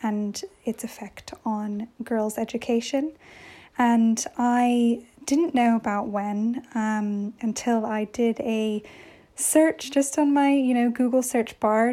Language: English